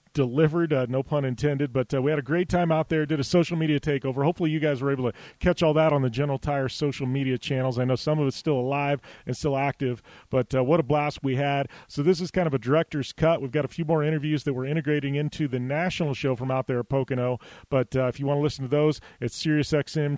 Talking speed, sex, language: 265 wpm, male, English